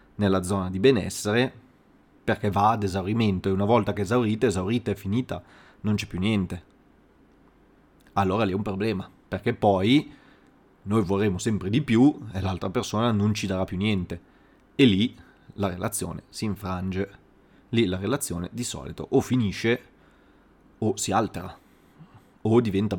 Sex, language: male, Italian